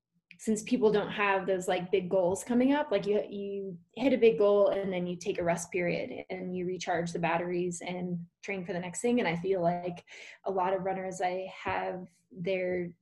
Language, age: English, 20-39